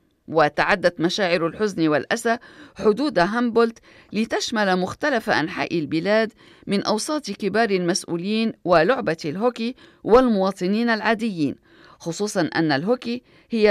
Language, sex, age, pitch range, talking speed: Arabic, female, 40-59, 180-235 Hz, 95 wpm